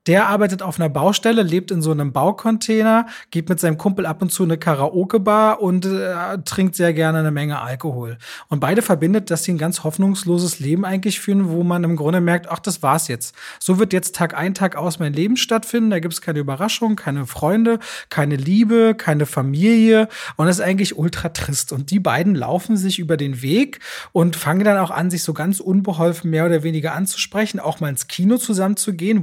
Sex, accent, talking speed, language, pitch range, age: male, German, 205 wpm, German, 165-220 Hz, 30-49